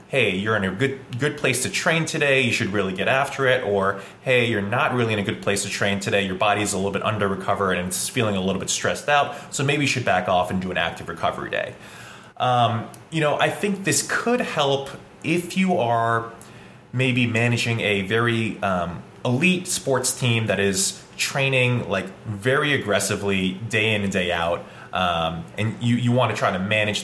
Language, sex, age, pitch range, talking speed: English, male, 20-39, 100-140 Hz, 210 wpm